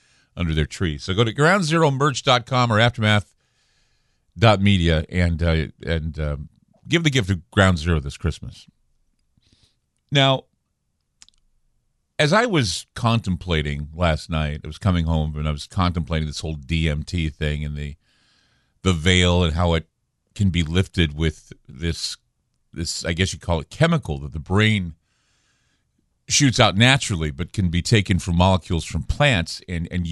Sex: male